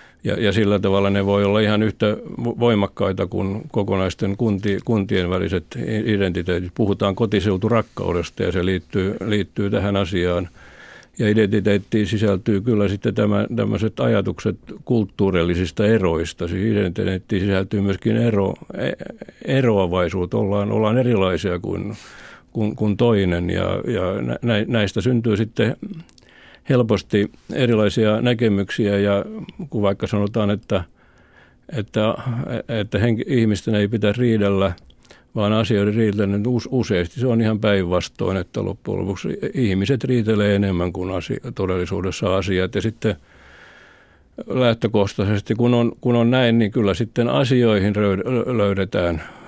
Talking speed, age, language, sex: 120 wpm, 60-79, Finnish, male